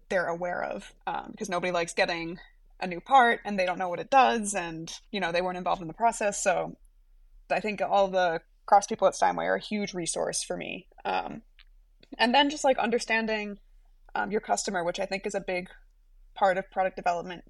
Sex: female